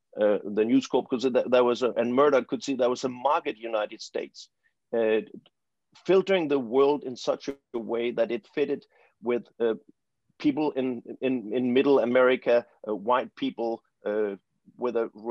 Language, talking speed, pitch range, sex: English, 150 wpm, 115-155 Hz, male